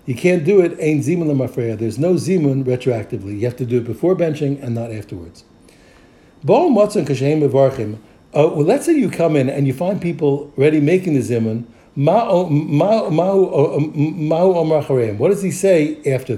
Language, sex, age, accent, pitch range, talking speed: English, male, 60-79, American, 130-185 Hz, 150 wpm